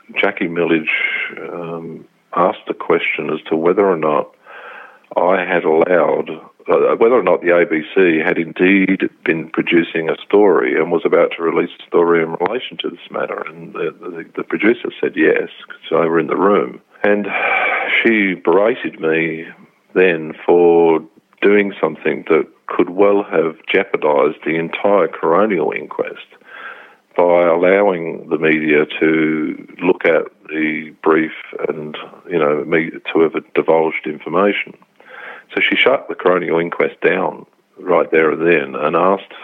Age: 50-69